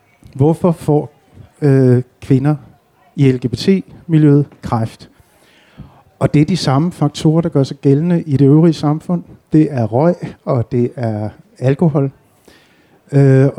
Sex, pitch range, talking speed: male, 125-155 Hz, 130 wpm